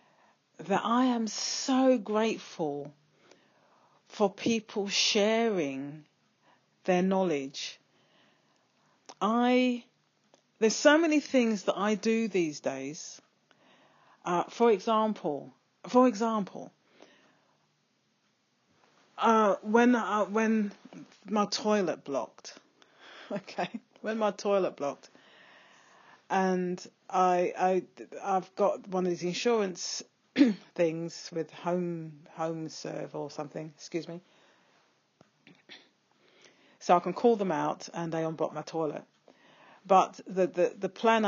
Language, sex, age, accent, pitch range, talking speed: English, female, 40-59, British, 160-220 Hz, 105 wpm